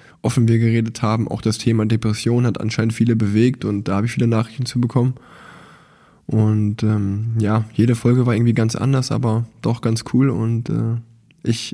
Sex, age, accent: male, 20-39, German